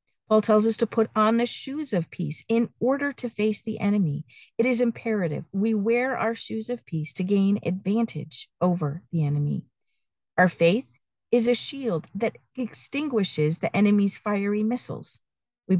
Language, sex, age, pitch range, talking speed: English, female, 50-69, 175-235 Hz, 165 wpm